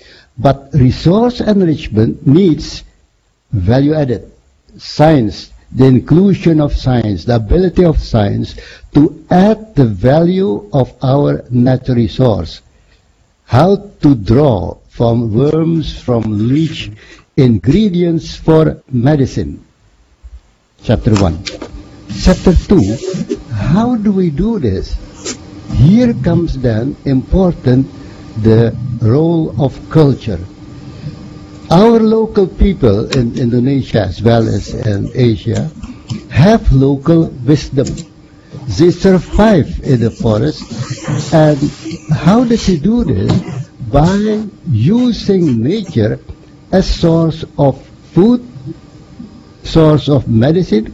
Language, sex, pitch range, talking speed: English, male, 115-165 Hz, 100 wpm